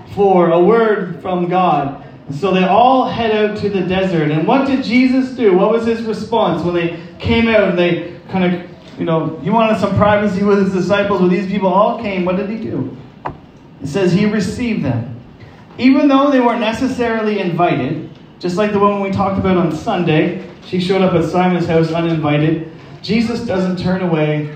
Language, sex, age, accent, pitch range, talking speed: English, male, 30-49, American, 160-205 Hz, 195 wpm